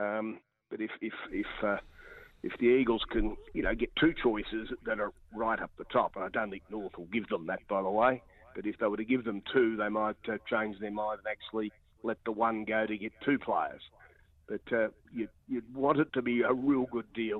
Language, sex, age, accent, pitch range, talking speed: English, male, 50-69, Australian, 105-125 Hz, 240 wpm